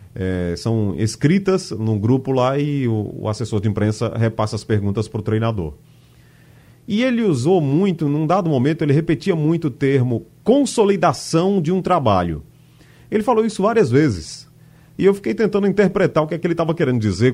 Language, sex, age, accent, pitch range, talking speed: Portuguese, male, 30-49, Brazilian, 115-175 Hz, 175 wpm